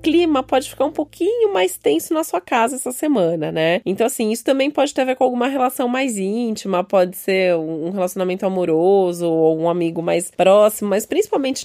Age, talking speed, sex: 20-39, 195 wpm, female